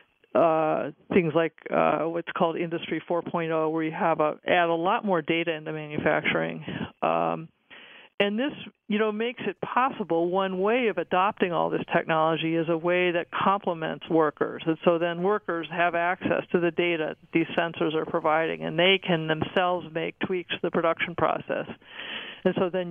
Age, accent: 50-69, American